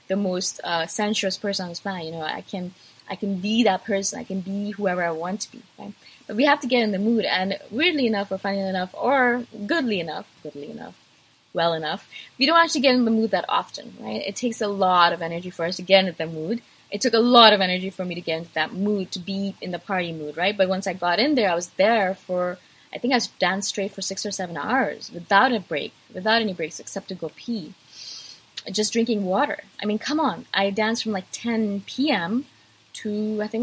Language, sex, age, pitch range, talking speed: English, female, 20-39, 185-235 Hz, 245 wpm